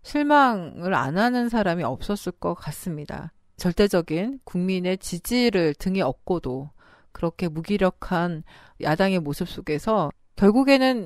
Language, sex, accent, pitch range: Korean, female, native, 165-235 Hz